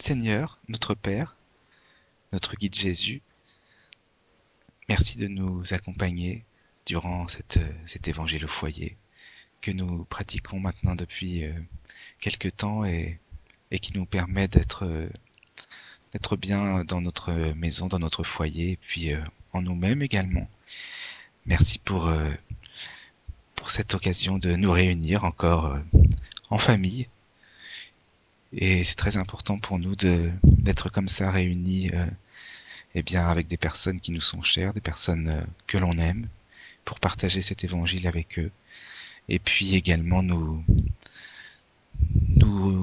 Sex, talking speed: male, 125 wpm